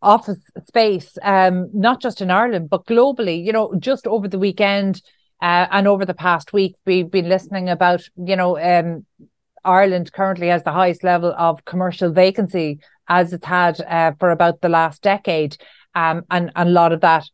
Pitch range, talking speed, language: 175-205 Hz, 185 wpm, English